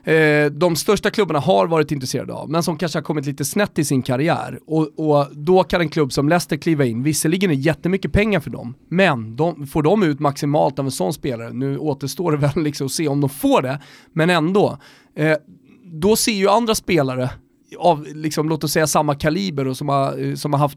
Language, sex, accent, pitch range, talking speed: Swedish, male, native, 135-175 Hz, 225 wpm